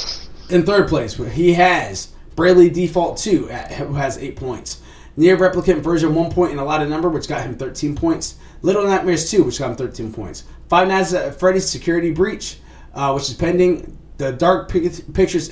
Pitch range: 120-175 Hz